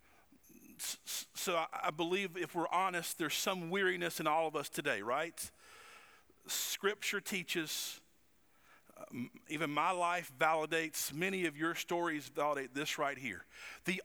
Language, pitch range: English, 165-240 Hz